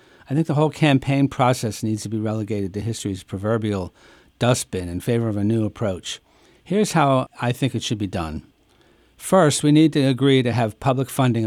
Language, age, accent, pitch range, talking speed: English, 60-79, American, 110-140 Hz, 195 wpm